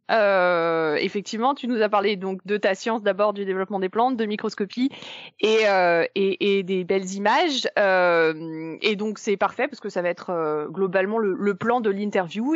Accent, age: French, 20-39